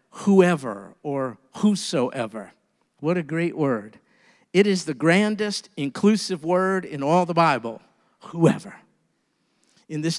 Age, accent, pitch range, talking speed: 50-69, American, 155-205 Hz, 120 wpm